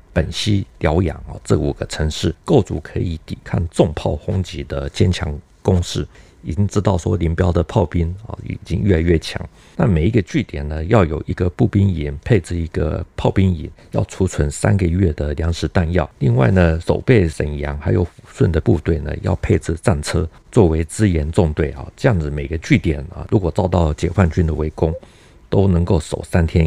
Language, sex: Chinese, male